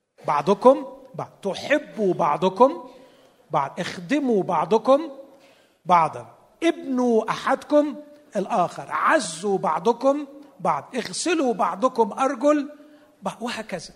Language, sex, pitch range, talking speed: Arabic, male, 150-245 Hz, 75 wpm